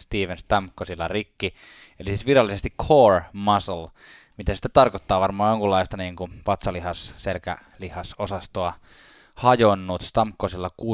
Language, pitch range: Finnish, 90-110 Hz